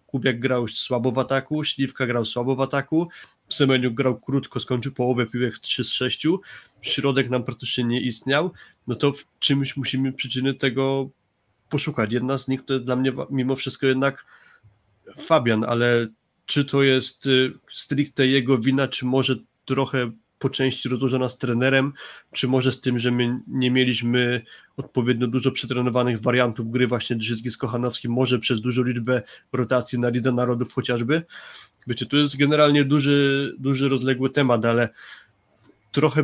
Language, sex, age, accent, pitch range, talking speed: Polish, male, 20-39, native, 125-135 Hz, 155 wpm